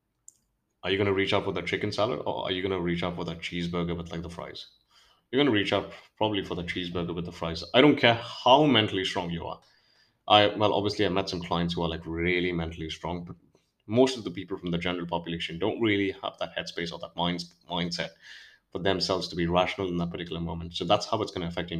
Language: English